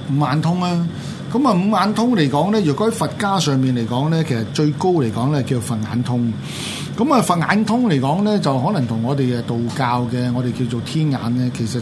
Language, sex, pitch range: Chinese, male, 125-180 Hz